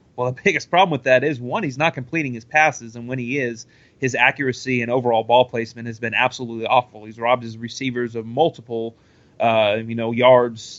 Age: 30-49